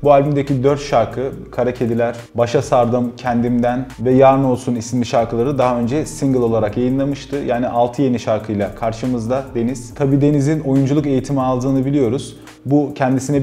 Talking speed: 150 wpm